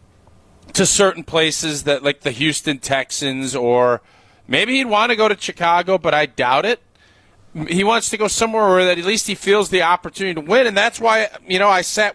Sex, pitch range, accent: male, 155-235 Hz, American